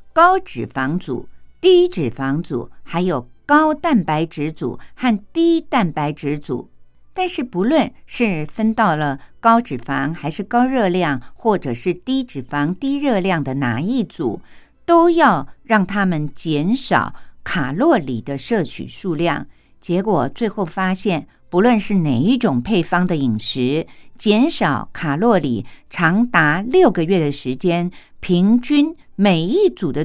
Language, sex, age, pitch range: Japanese, female, 50-69, 150-230 Hz